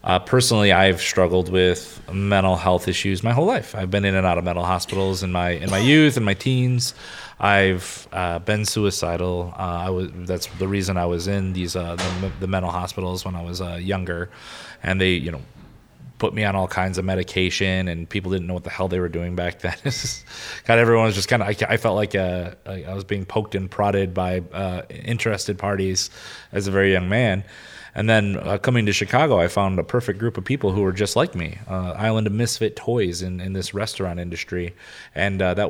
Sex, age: male, 30-49